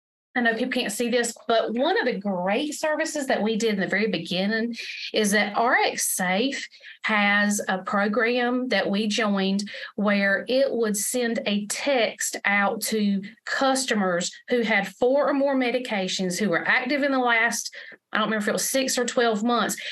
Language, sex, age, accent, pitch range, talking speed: English, female, 40-59, American, 205-255 Hz, 180 wpm